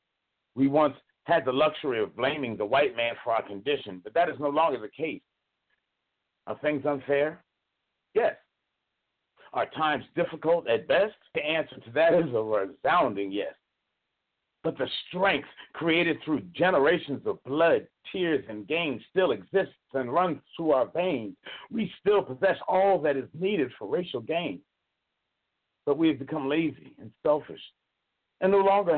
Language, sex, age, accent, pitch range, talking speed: English, male, 50-69, American, 135-170 Hz, 155 wpm